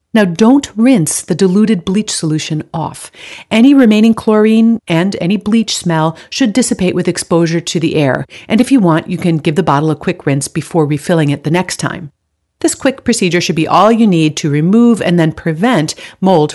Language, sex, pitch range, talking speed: English, female, 155-215 Hz, 195 wpm